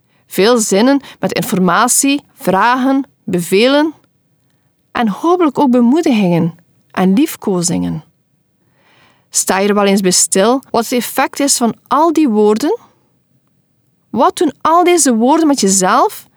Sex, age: female, 40-59